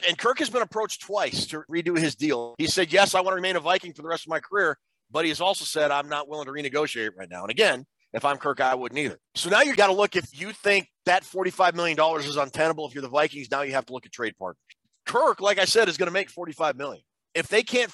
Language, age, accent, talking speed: English, 40-59, American, 280 wpm